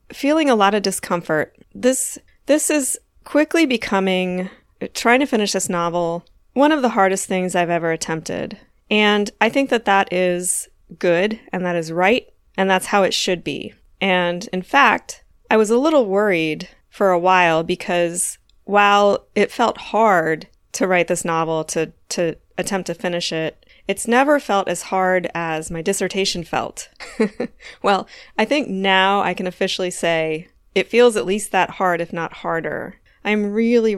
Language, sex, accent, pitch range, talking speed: English, female, American, 175-210 Hz, 165 wpm